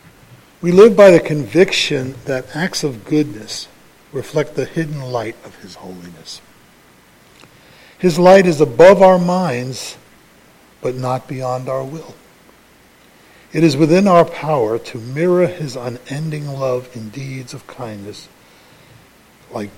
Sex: male